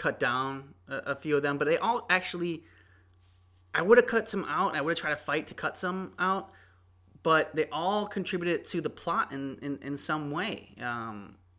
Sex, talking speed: male, 205 wpm